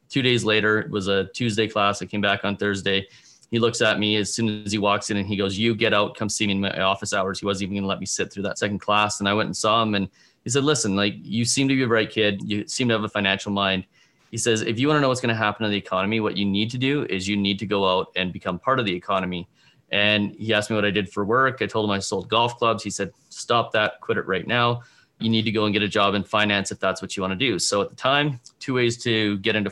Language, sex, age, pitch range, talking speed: English, male, 30-49, 100-110 Hz, 310 wpm